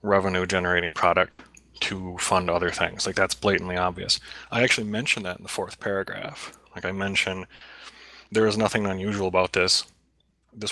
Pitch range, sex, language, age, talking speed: 95-105 Hz, male, English, 20-39, 160 wpm